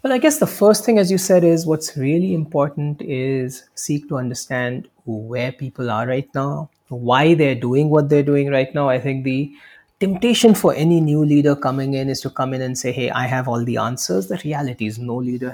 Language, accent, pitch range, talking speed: English, Indian, 125-170 Hz, 220 wpm